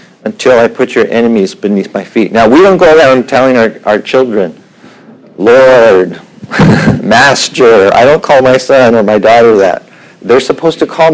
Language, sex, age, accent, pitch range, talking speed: English, male, 50-69, American, 115-155 Hz, 170 wpm